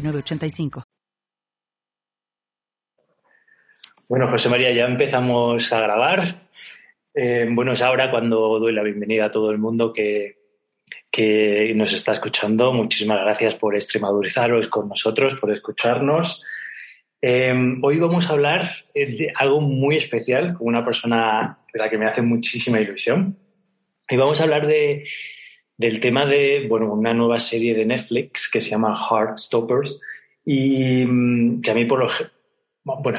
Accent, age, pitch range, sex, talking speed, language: Spanish, 20-39, 110-135 Hz, male, 140 wpm, Spanish